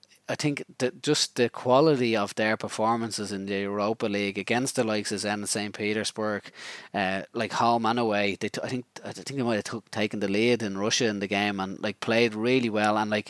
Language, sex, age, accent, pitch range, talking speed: English, male, 20-39, Irish, 105-125 Hz, 225 wpm